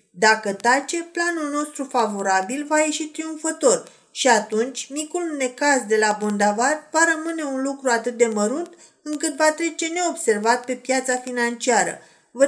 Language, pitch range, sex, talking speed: Romanian, 230-290 Hz, female, 145 wpm